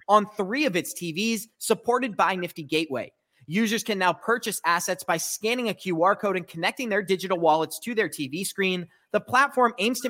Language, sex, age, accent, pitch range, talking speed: English, male, 30-49, American, 170-220 Hz, 190 wpm